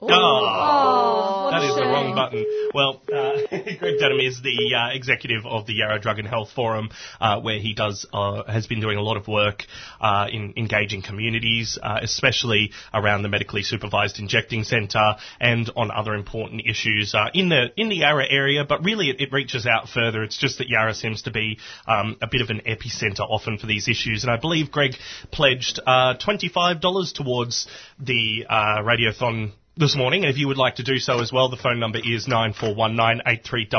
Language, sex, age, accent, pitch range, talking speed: English, male, 20-39, Australian, 110-135 Hz, 195 wpm